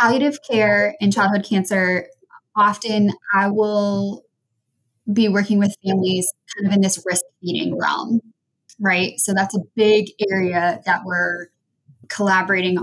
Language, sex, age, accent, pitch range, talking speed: English, female, 20-39, American, 175-210 Hz, 130 wpm